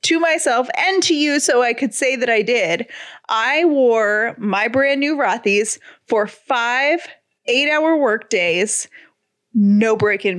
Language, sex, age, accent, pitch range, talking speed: English, female, 20-39, American, 215-280 Hz, 150 wpm